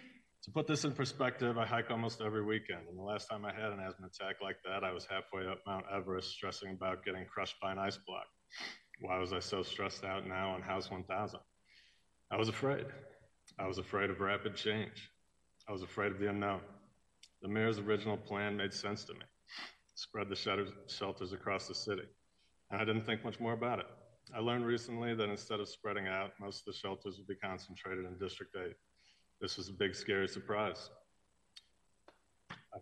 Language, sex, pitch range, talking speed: English, male, 95-110 Hz, 195 wpm